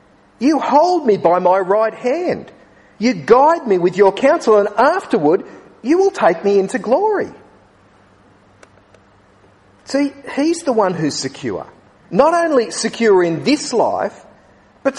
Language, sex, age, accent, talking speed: English, male, 40-59, Australian, 135 wpm